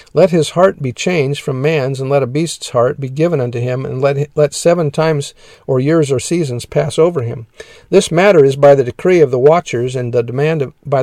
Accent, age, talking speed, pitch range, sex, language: American, 50-69, 225 wpm, 130-155 Hz, male, English